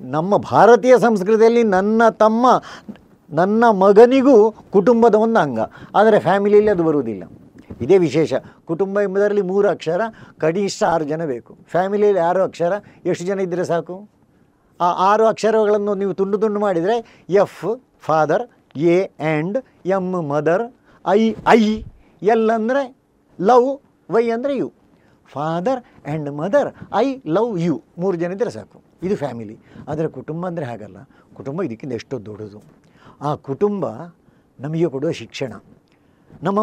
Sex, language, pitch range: male, Kannada, 140-210 Hz